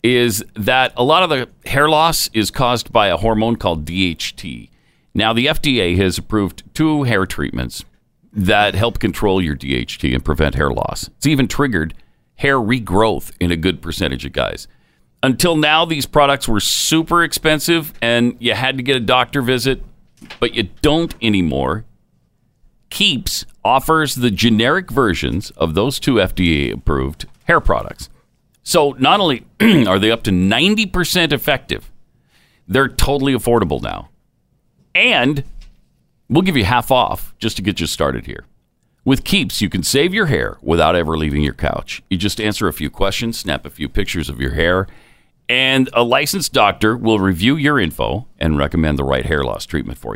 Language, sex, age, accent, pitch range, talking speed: English, male, 50-69, American, 95-140 Hz, 165 wpm